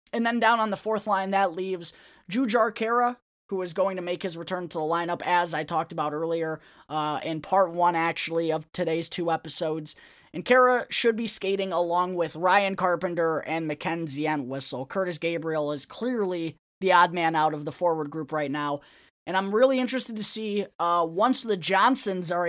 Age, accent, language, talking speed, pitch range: 20-39, American, English, 195 wpm, 160-205 Hz